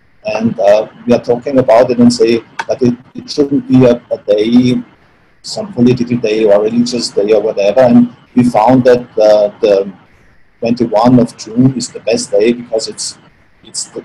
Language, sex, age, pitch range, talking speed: English, male, 50-69, 110-130 Hz, 180 wpm